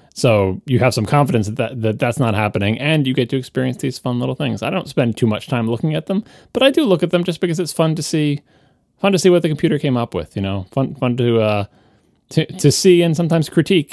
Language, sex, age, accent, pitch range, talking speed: English, male, 20-39, American, 115-150 Hz, 265 wpm